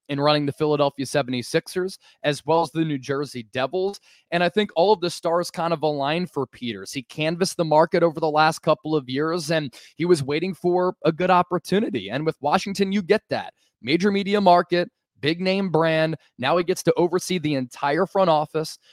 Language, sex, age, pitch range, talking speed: English, male, 20-39, 150-180 Hz, 195 wpm